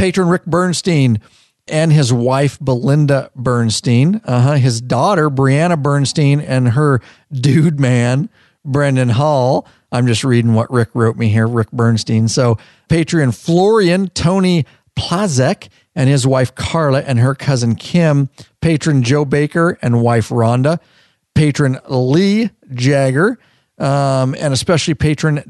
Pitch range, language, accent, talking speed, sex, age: 120-150 Hz, English, American, 130 wpm, male, 50-69